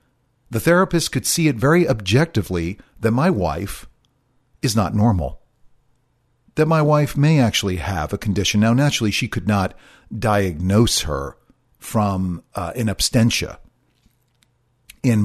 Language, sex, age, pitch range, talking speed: English, male, 50-69, 100-130 Hz, 130 wpm